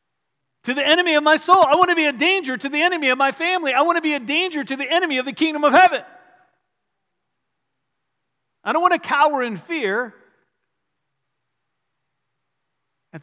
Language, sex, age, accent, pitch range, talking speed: English, male, 50-69, American, 150-235 Hz, 180 wpm